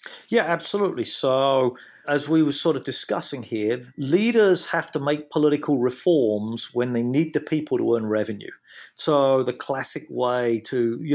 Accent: British